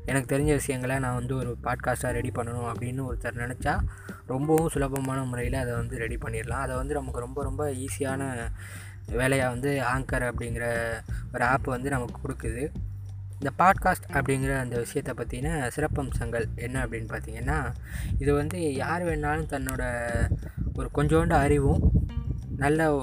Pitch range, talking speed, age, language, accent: 120-140 Hz, 140 wpm, 20-39, Tamil, native